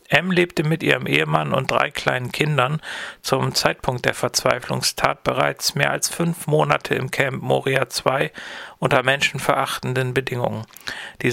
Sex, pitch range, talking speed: male, 125-145 Hz, 140 wpm